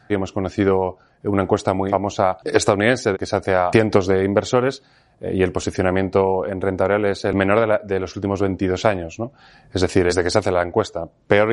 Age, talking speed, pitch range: 30-49, 220 wpm, 95-115 Hz